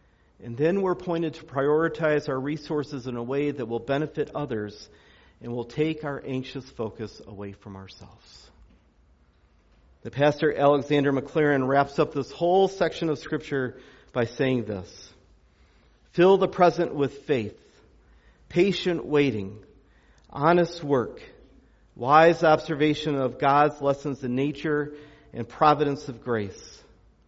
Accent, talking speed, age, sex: American, 130 wpm, 50-69, male